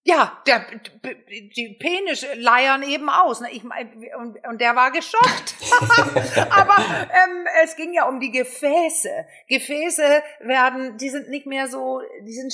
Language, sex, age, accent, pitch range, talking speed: German, female, 50-69, German, 220-290 Hz, 140 wpm